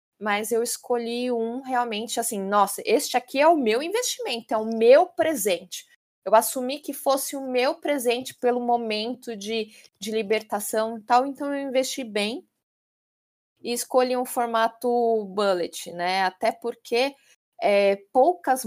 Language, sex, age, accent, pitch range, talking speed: Portuguese, female, 20-39, Brazilian, 195-240 Hz, 140 wpm